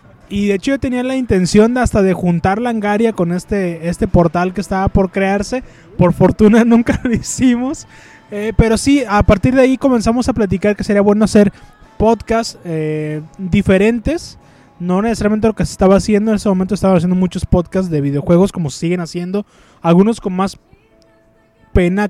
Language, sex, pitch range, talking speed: Spanish, male, 185-230 Hz, 175 wpm